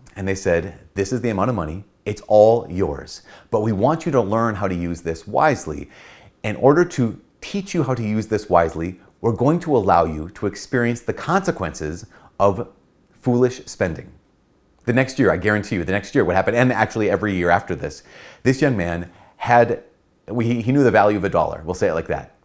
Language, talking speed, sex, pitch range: English, 205 wpm, male, 90-120 Hz